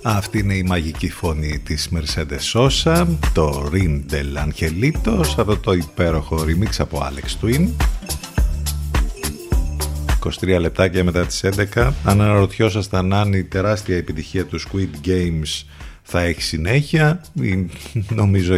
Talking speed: 115 wpm